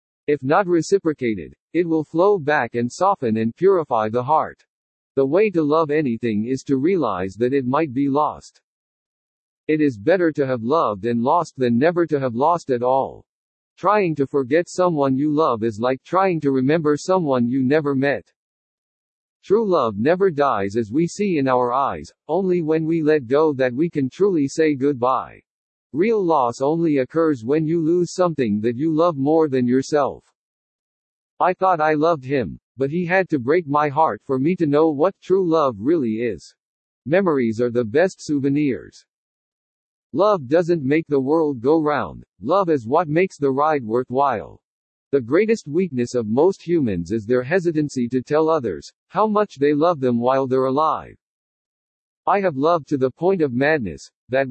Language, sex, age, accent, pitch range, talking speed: English, male, 50-69, American, 130-165 Hz, 175 wpm